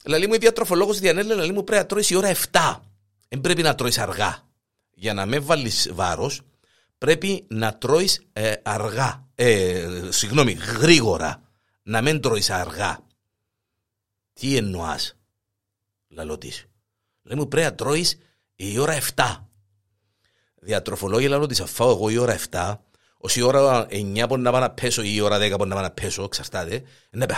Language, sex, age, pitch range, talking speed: Greek, male, 50-69, 100-165 Hz, 95 wpm